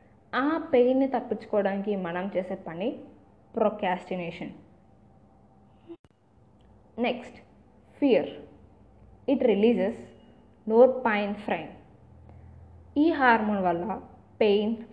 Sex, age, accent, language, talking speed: female, 20-39, native, Telugu, 70 wpm